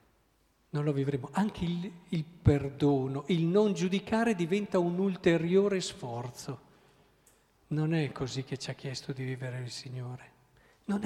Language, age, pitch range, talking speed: Italian, 50-69, 135-175 Hz, 140 wpm